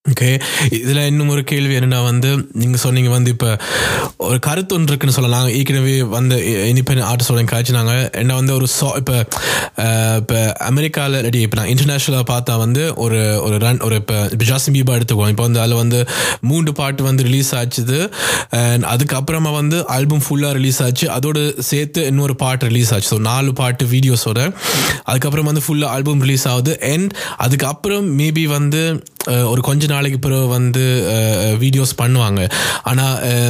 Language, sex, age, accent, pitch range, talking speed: Tamil, male, 20-39, native, 120-145 Hz, 150 wpm